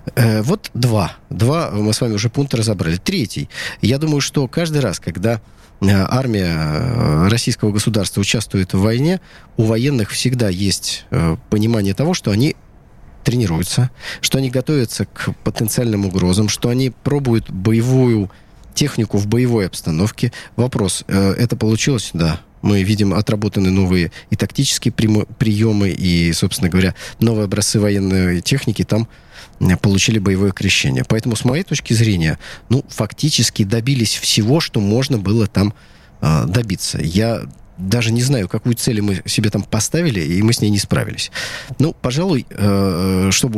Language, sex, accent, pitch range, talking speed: Russian, male, native, 100-130 Hz, 140 wpm